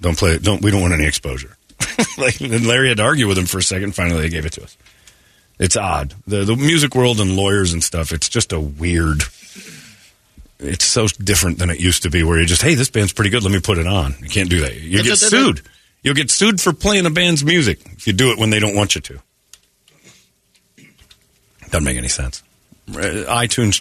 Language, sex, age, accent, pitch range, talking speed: English, male, 40-59, American, 90-120 Hz, 225 wpm